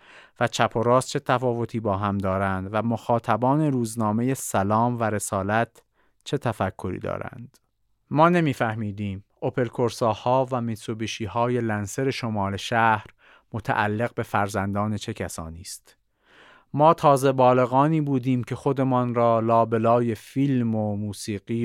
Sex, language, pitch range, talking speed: male, Persian, 110-135 Hz, 120 wpm